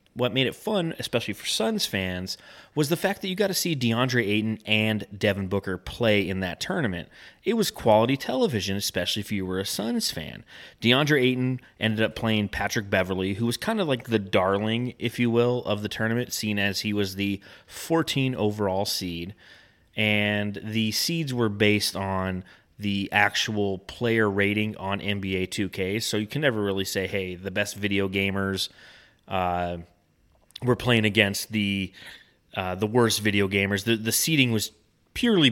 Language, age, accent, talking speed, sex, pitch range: English, 30-49, American, 175 wpm, male, 100-115 Hz